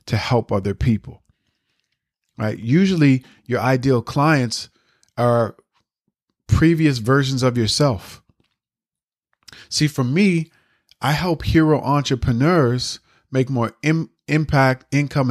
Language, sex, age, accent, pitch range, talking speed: English, male, 40-59, American, 115-140 Hz, 100 wpm